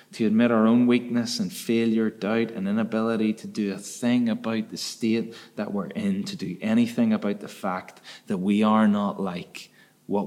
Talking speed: 185 wpm